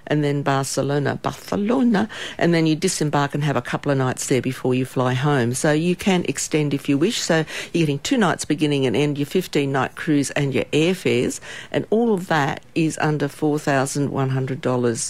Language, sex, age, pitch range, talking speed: English, female, 50-69, 130-170 Hz, 185 wpm